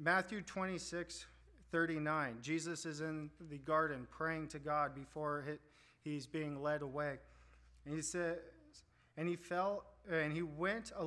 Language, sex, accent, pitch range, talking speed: English, male, American, 130-175 Hz, 145 wpm